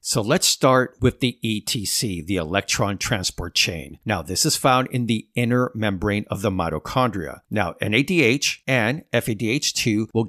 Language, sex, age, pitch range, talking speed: English, male, 50-69, 105-140 Hz, 150 wpm